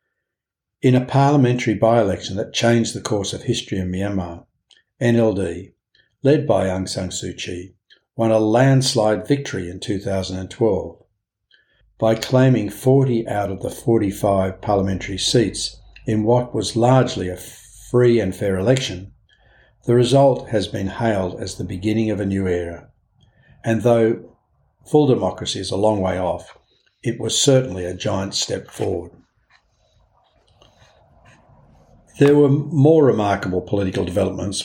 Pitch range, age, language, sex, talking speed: 95-120 Hz, 60-79, English, male, 135 wpm